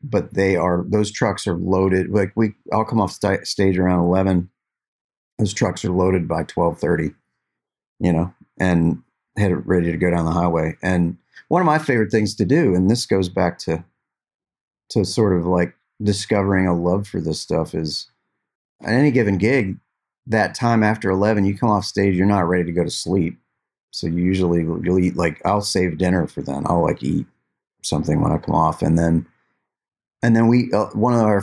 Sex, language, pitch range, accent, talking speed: male, English, 85-100 Hz, American, 195 wpm